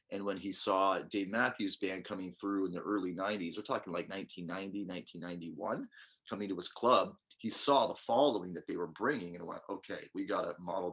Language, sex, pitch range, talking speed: English, male, 95-115 Hz, 205 wpm